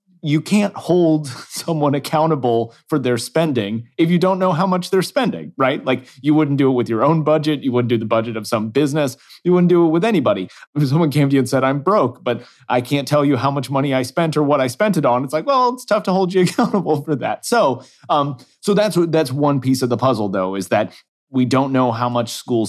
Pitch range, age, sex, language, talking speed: 120-155 Hz, 30-49, male, English, 255 wpm